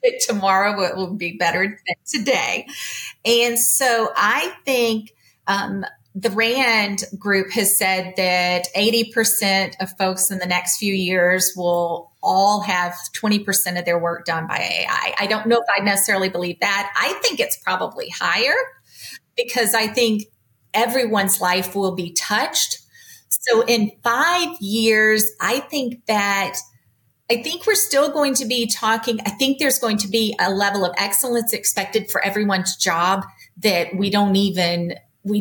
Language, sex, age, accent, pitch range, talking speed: English, female, 30-49, American, 185-235 Hz, 155 wpm